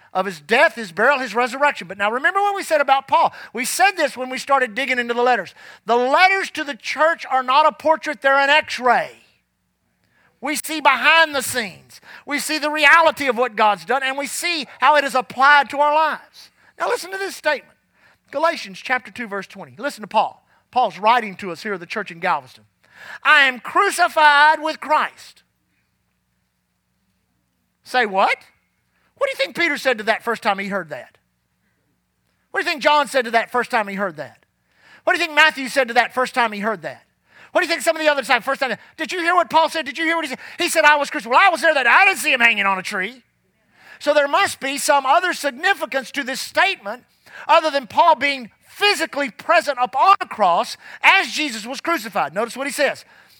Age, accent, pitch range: 40-59, American, 230-315 Hz